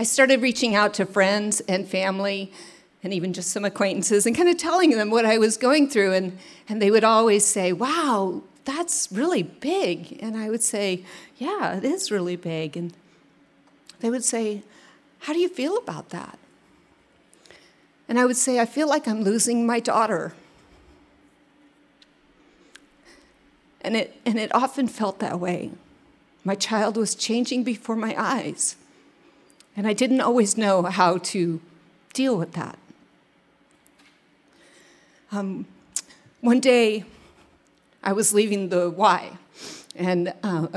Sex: female